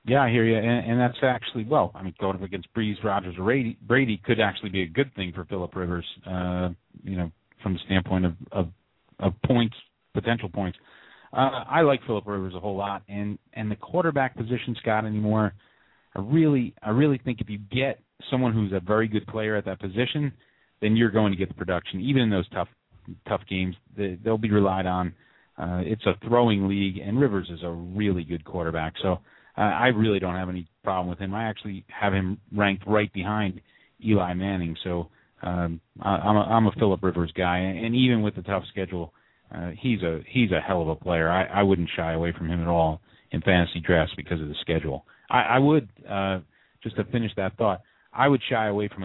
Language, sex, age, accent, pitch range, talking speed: English, male, 30-49, American, 90-110 Hz, 215 wpm